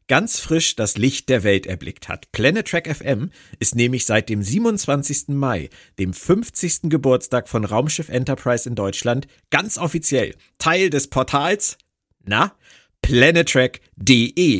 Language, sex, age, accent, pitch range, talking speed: German, male, 50-69, German, 120-160 Hz, 125 wpm